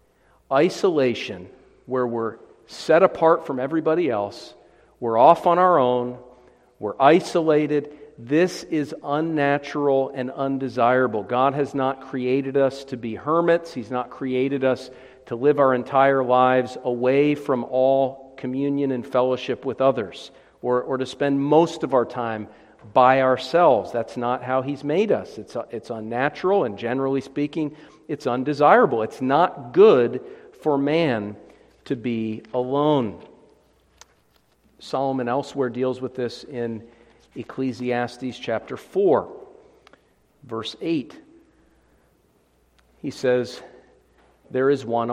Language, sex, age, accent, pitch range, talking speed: English, male, 50-69, American, 125-155 Hz, 125 wpm